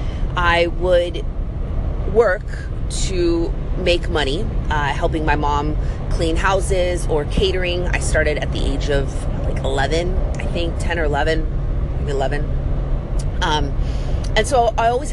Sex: female